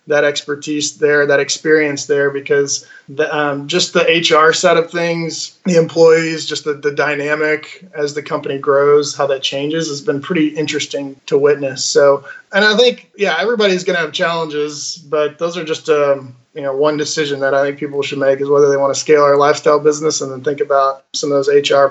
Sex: male